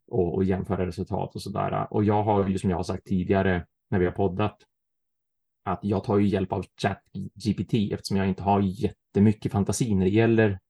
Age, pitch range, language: 30-49, 95-110 Hz, Swedish